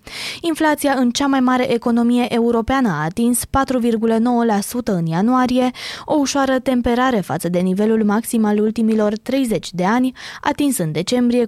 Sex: female